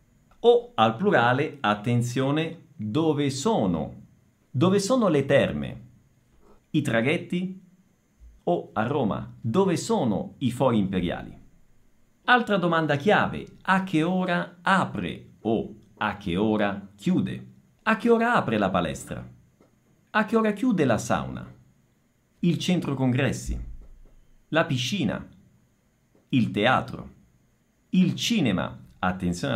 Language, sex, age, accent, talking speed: Italian, male, 50-69, native, 110 wpm